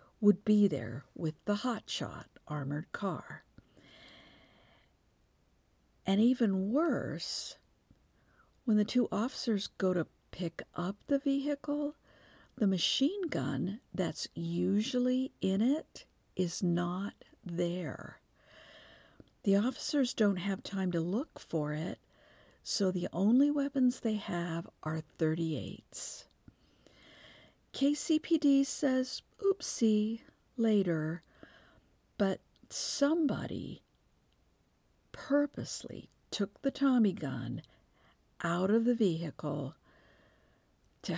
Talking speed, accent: 95 wpm, American